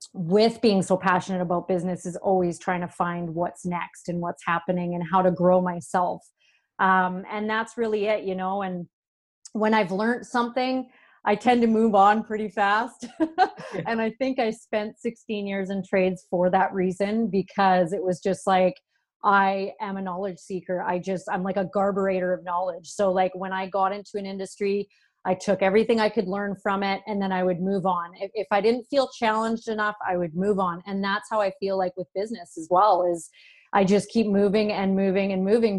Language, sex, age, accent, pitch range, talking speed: English, female, 30-49, American, 185-210 Hz, 205 wpm